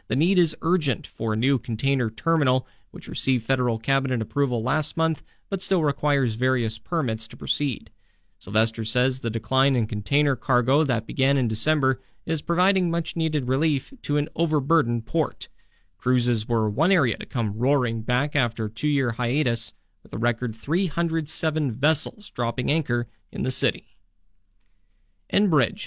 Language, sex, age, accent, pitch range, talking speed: English, male, 40-59, American, 120-150 Hz, 150 wpm